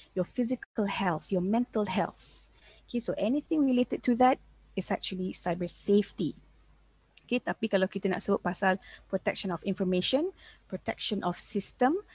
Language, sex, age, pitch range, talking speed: Malay, female, 20-39, 180-230 Hz, 145 wpm